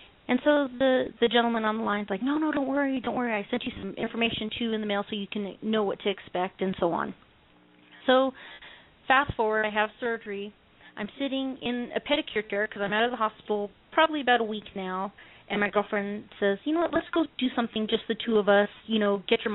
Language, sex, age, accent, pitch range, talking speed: English, female, 30-49, American, 200-255 Hz, 240 wpm